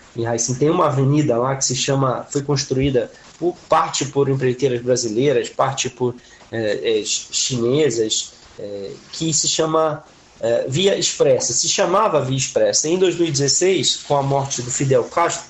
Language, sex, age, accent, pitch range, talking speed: Portuguese, male, 20-39, Brazilian, 130-160 Hz, 145 wpm